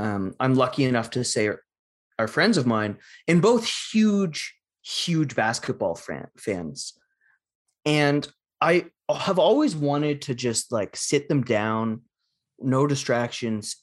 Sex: male